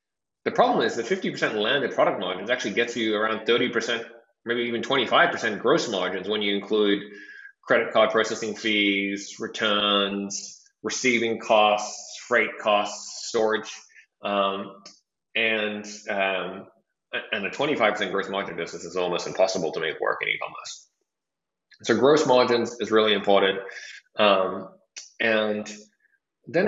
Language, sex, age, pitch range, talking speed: English, male, 20-39, 100-125 Hz, 125 wpm